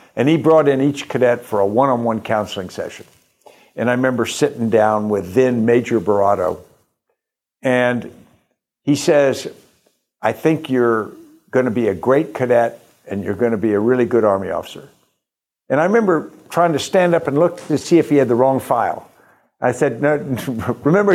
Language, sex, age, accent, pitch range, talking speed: English, male, 60-79, American, 115-150 Hz, 175 wpm